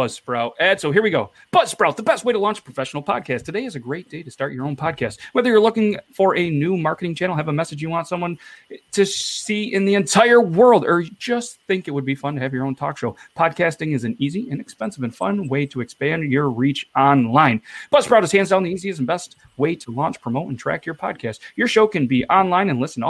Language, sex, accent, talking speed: English, male, American, 250 wpm